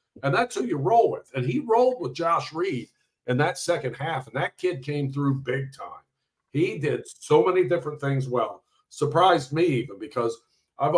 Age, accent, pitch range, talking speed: 50-69, American, 130-160 Hz, 190 wpm